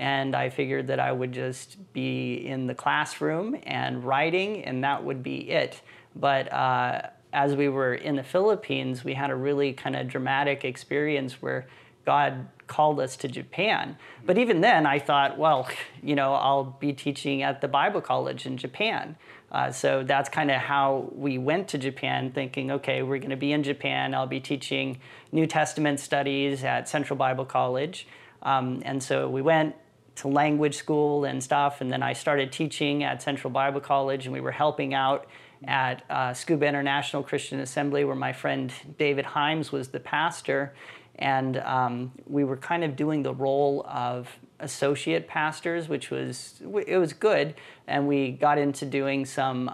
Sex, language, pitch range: male, English, 135-145 Hz